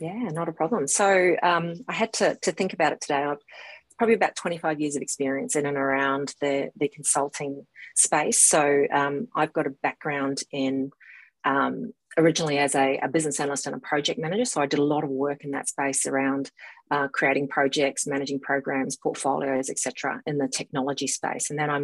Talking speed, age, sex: 200 wpm, 30-49, female